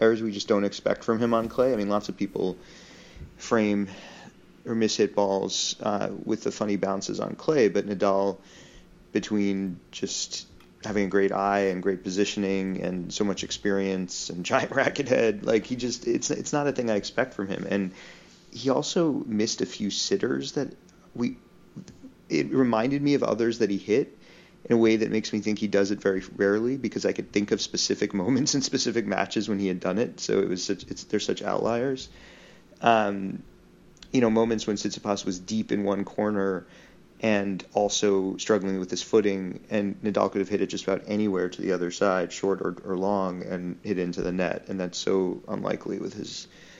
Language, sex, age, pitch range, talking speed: English, male, 30-49, 95-110 Hz, 195 wpm